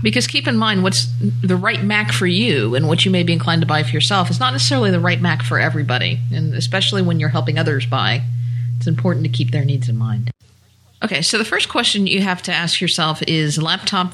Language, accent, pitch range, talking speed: English, American, 125-160 Hz, 235 wpm